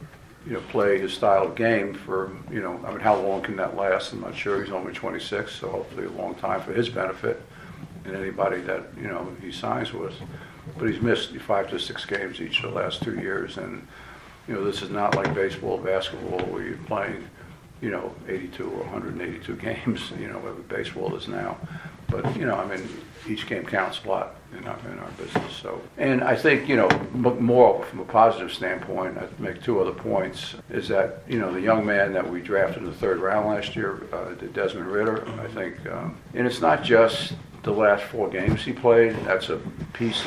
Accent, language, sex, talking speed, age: American, English, male, 210 wpm, 60-79